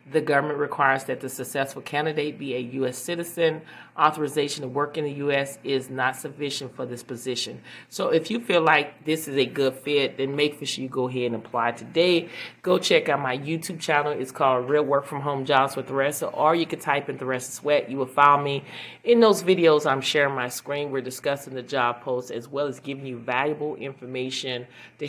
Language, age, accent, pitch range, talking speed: English, 30-49, American, 125-150 Hz, 210 wpm